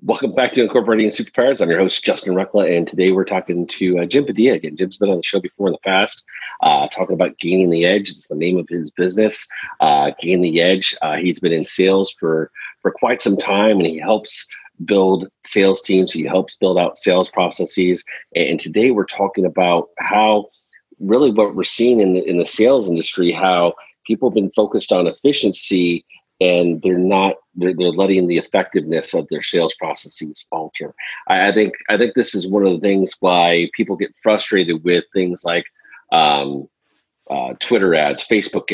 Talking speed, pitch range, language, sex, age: 190 wpm, 85-105 Hz, English, male, 40-59